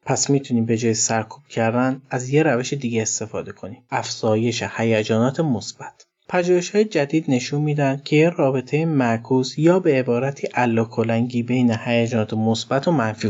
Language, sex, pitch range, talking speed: Persian, male, 115-140 Hz, 145 wpm